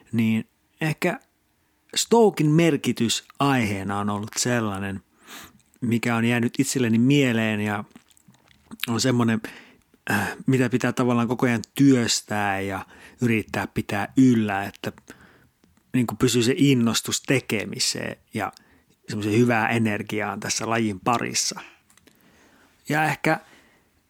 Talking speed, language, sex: 100 wpm, Finnish, male